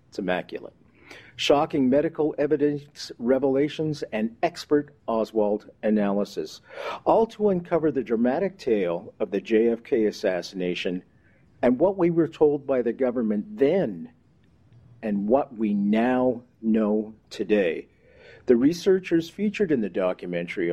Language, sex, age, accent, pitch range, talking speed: English, male, 50-69, American, 110-155 Hz, 120 wpm